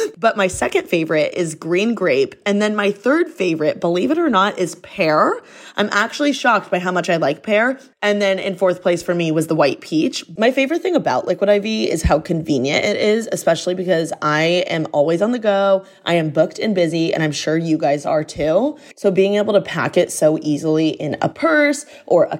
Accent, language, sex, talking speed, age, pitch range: American, English, female, 220 wpm, 20-39, 160-210 Hz